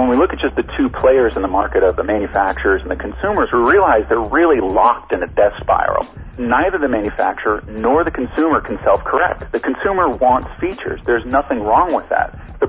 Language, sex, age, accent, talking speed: English, male, 40-59, American, 210 wpm